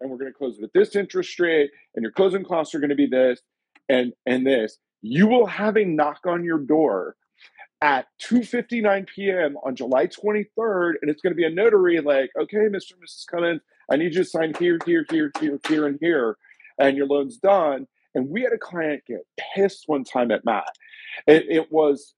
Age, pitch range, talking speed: 40-59, 130-200 Hz, 220 wpm